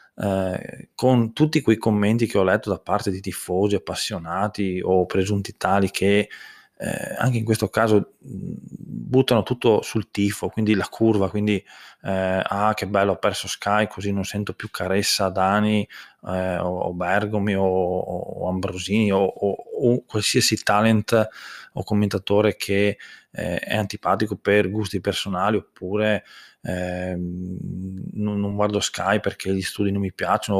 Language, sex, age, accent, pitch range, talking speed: Italian, male, 20-39, native, 95-110 Hz, 145 wpm